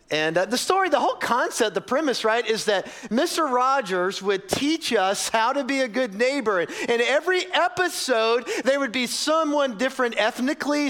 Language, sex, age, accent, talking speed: English, male, 40-59, American, 175 wpm